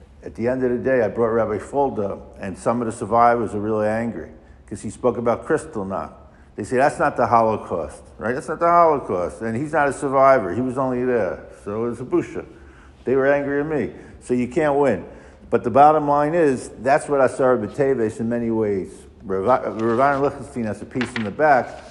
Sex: male